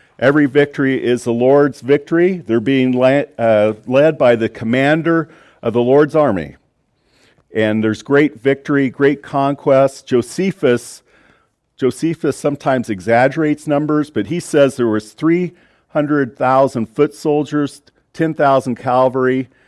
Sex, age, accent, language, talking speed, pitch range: male, 50-69, American, English, 120 wpm, 110-150 Hz